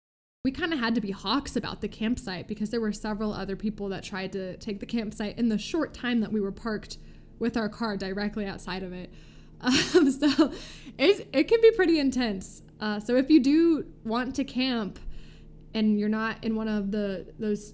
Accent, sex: American, female